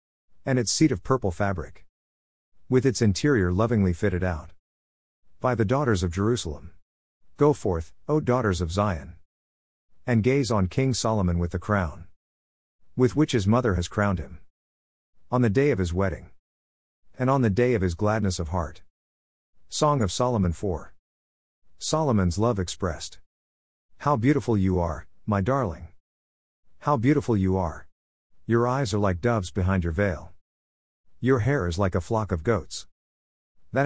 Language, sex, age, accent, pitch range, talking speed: English, male, 50-69, American, 75-115 Hz, 155 wpm